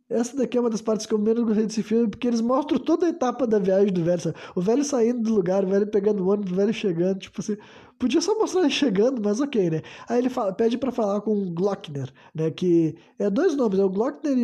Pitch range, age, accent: 190-235 Hz, 20-39, Brazilian